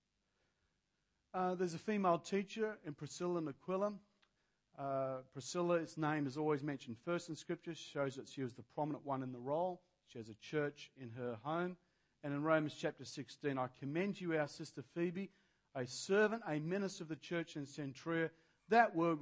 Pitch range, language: 135-190 Hz, English